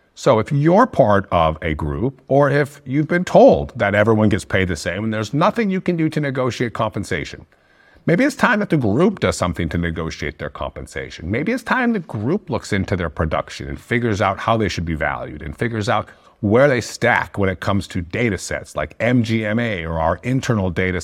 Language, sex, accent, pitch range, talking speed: English, male, American, 90-145 Hz, 210 wpm